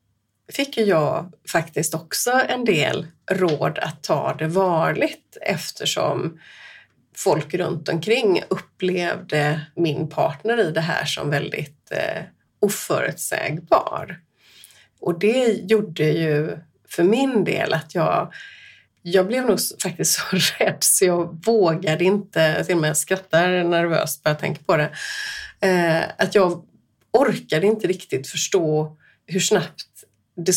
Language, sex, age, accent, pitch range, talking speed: Swedish, female, 30-49, native, 160-215 Hz, 120 wpm